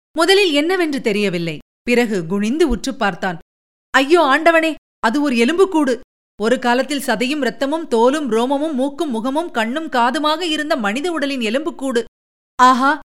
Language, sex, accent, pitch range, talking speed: Tamil, female, native, 220-285 Hz, 125 wpm